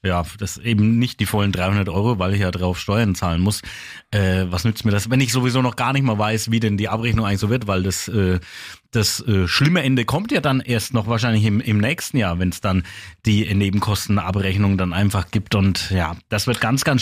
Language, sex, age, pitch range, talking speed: German, male, 30-49, 105-135 Hz, 235 wpm